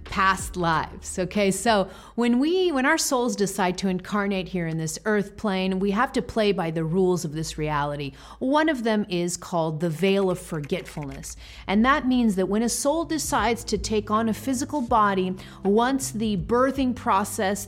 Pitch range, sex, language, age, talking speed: 190-240 Hz, female, English, 40-59, 185 wpm